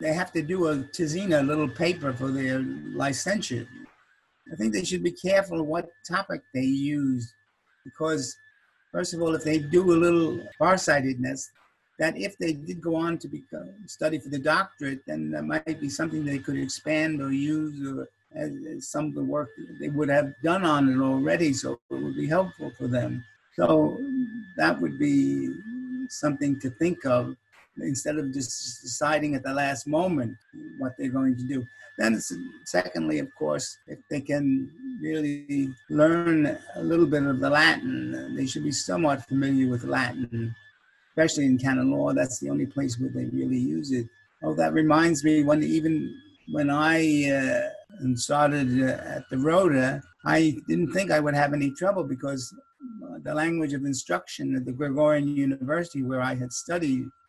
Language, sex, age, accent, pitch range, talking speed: English, male, 50-69, American, 130-165 Hz, 170 wpm